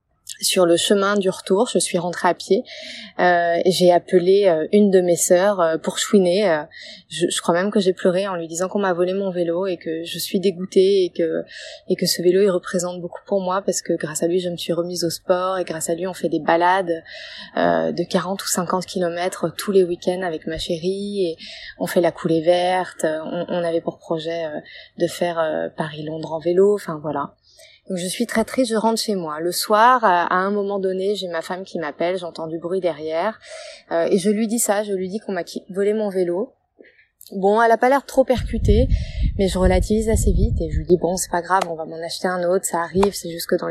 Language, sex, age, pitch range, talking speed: French, female, 20-39, 170-200 Hz, 240 wpm